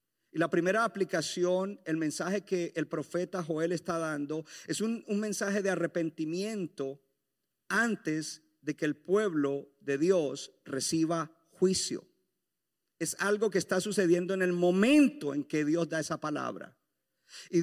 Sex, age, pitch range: male, 50-69, 145-190 Hz